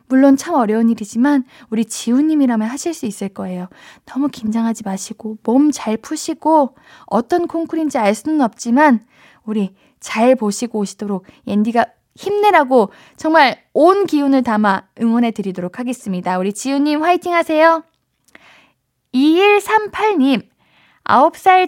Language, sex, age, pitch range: Korean, female, 10-29, 225-305 Hz